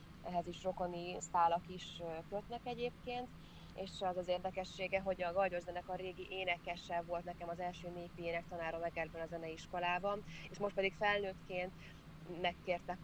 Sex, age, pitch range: female, 20-39, 170-185 Hz